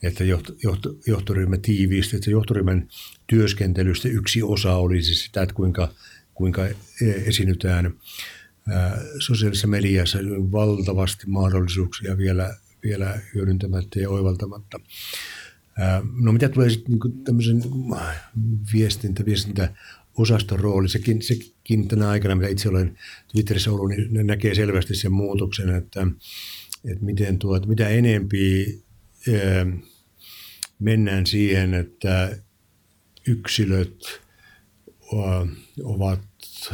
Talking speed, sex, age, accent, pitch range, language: 95 wpm, male, 60-79, native, 95-105 Hz, Finnish